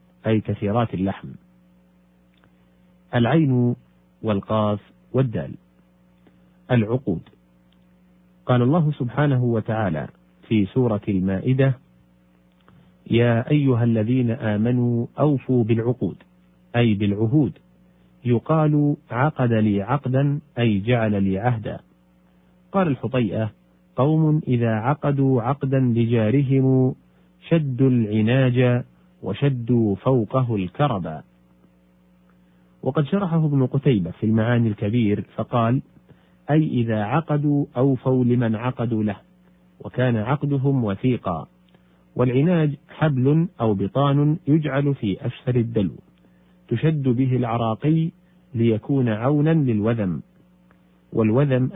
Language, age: Arabic, 40-59